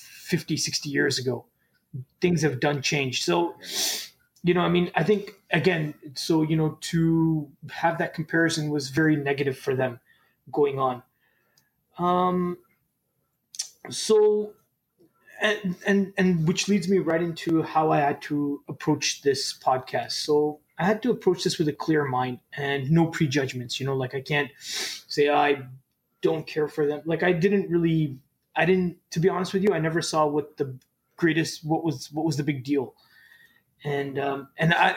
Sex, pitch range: male, 145-175 Hz